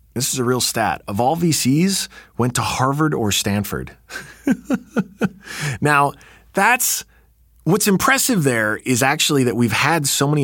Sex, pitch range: male, 100-140 Hz